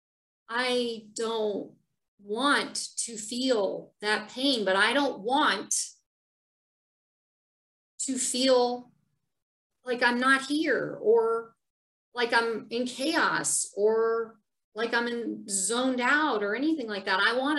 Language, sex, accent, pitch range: English, female, American, 225-285 Hz